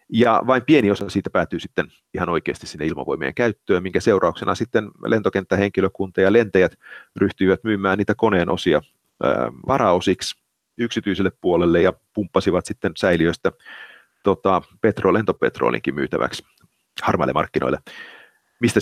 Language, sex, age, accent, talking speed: Finnish, male, 40-59, native, 110 wpm